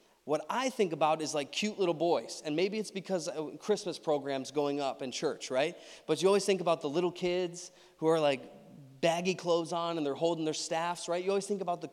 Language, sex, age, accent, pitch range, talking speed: English, male, 20-39, American, 145-175 Hz, 225 wpm